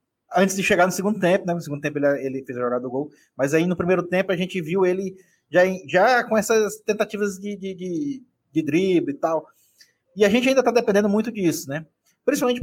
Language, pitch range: Portuguese, 150-210 Hz